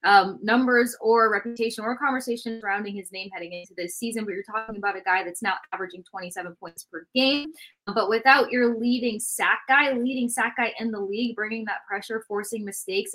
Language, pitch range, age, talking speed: English, 185-225 Hz, 20-39, 195 wpm